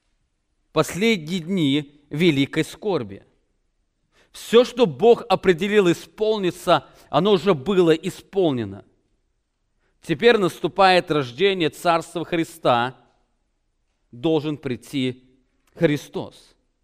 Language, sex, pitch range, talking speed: English, male, 135-180 Hz, 75 wpm